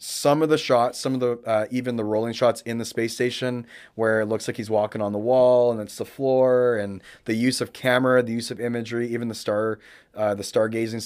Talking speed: 240 wpm